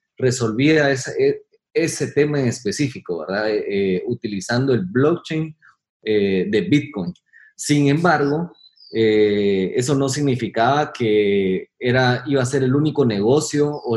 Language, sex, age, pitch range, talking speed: Spanish, male, 30-49, 110-145 Hz, 130 wpm